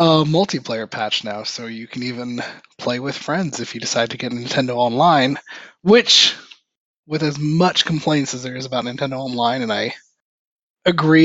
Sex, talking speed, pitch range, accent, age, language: male, 170 wpm, 125-165 Hz, American, 20-39, English